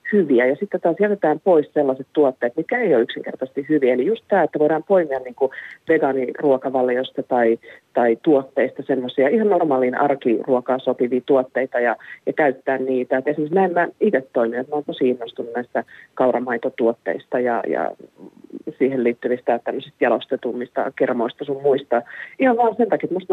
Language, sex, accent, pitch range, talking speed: Finnish, female, native, 125-155 Hz, 150 wpm